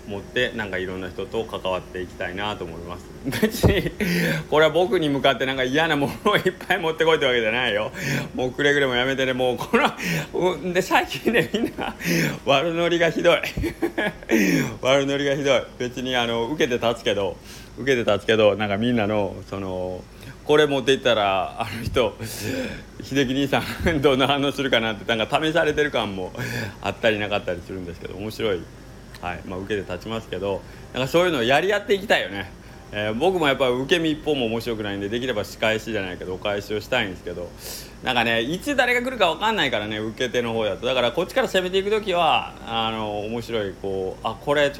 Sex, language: male, Japanese